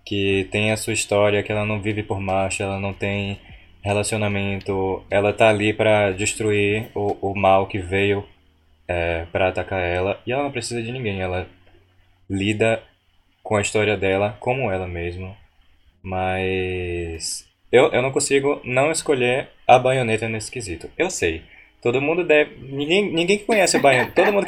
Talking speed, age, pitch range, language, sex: 165 wpm, 20-39, 95-120 Hz, Portuguese, male